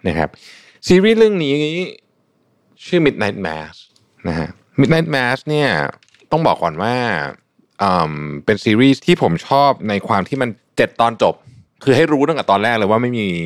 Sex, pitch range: male, 90-115 Hz